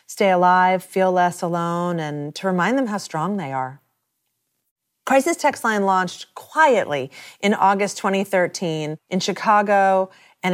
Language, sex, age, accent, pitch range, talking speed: English, female, 40-59, American, 180-225 Hz, 135 wpm